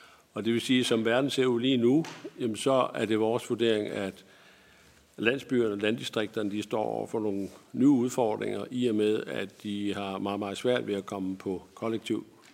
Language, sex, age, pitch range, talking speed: Danish, male, 50-69, 100-115 Hz, 195 wpm